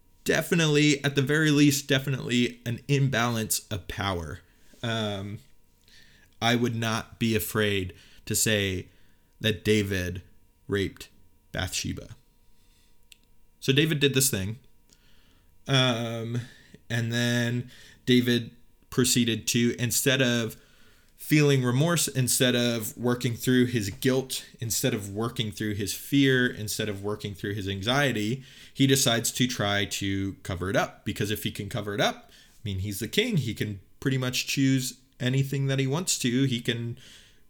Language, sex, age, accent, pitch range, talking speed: English, male, 20-39, American, 100-130 Hz, 140 wpm